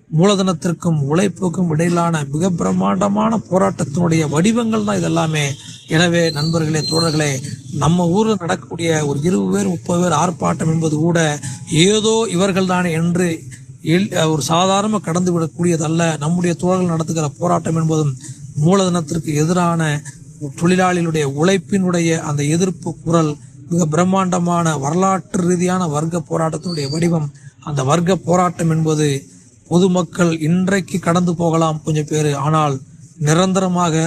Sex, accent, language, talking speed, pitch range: male, native, Tamil, 110 wpm, 150-180 Hz